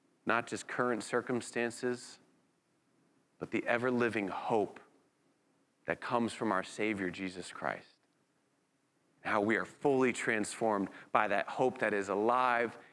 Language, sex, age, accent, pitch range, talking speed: English, male, 30-49, American, 115-150 Hz, 125 wpm